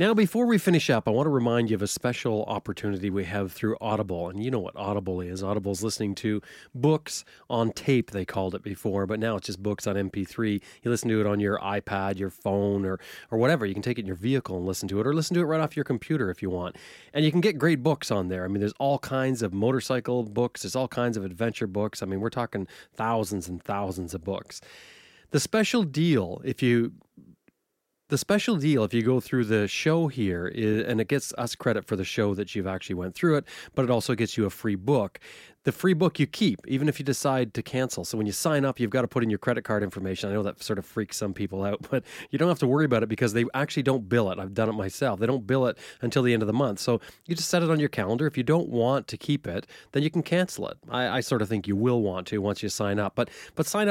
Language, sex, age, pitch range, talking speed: English, male, 30-49, 100-140 Hz, 270 wpm